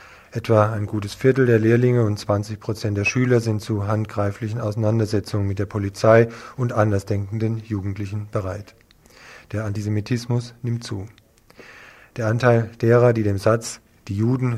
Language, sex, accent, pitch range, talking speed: German, male, German, 105-115 Hz, 135 wpm